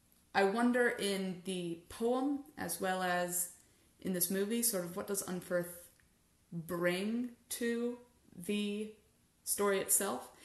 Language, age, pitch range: English, 30-49, 175-220 Hz